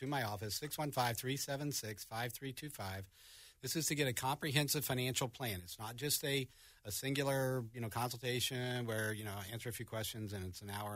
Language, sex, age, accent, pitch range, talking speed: English, male, 50-69, American, 105-135 Hz, 180 wpm